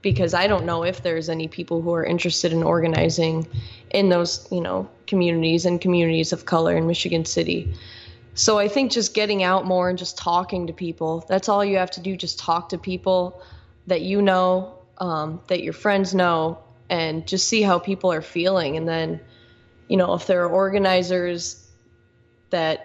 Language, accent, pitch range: English, American, 160-185 Hz